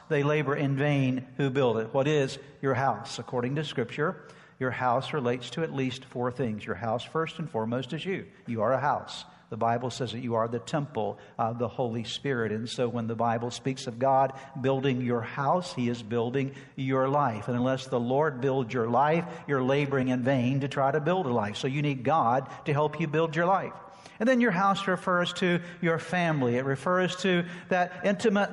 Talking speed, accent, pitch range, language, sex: 210 wpm, American, 135-175 Hz, English, male